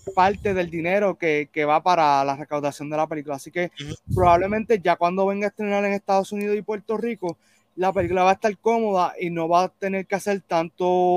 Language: Spanish